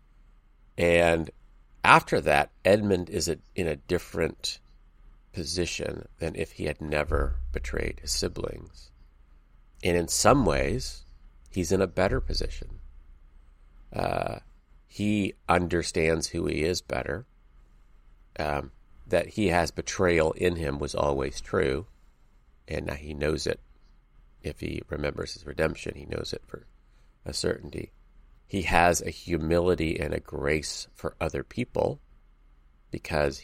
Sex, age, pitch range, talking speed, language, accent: male, 40-59, 65-85 Hz, 125 wpm, English, American